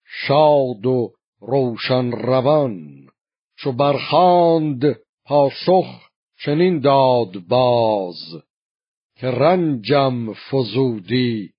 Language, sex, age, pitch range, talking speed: Persian, male, 50-69, 110-140 Hz, 65 wpm